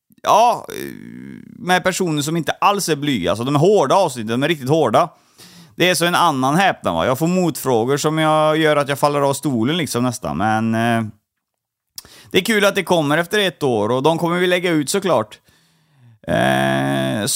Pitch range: 130-175 Hz